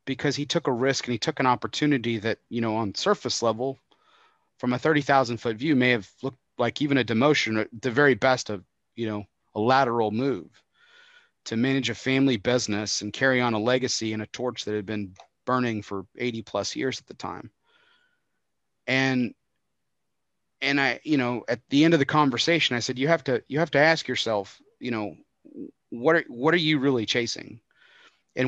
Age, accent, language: 30-49, American, English